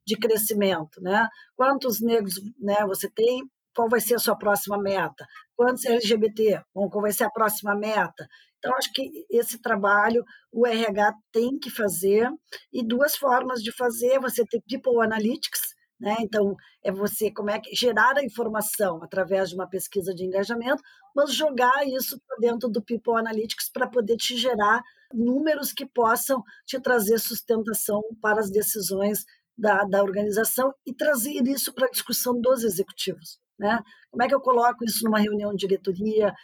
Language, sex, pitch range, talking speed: Portuguese, female, 205-250 Hz, 165 wpm